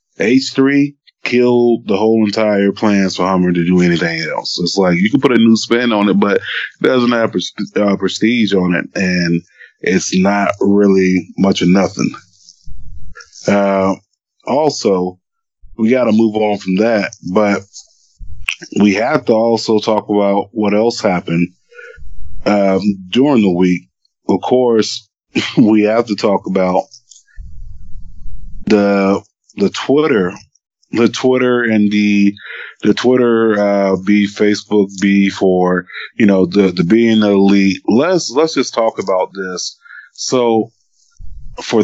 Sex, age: male, 20-39